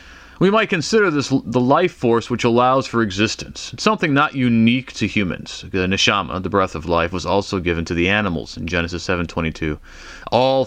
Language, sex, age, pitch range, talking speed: English, male, 30-49, 85-120 Hz, 185 wpm